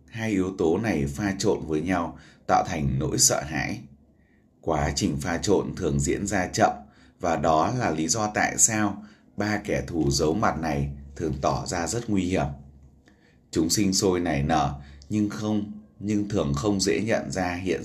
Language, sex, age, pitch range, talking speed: Vietnamese, male, 20-39, 70-100 Hz, 180 wpm